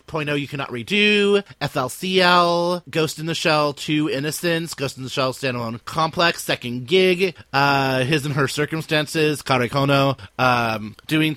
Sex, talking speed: male, 145 wpm